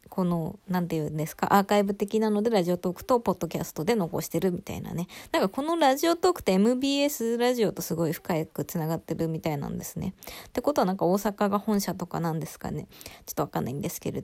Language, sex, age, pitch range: Japanese, female, 20-39, 175-225 Hz